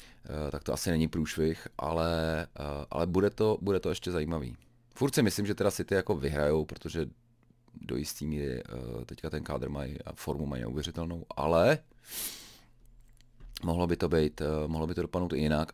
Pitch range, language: 75-95 Hz, Czech